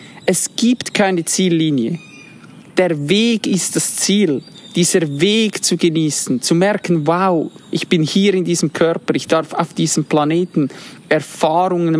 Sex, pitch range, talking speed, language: male, 160-190 Hz, 140 wpm, German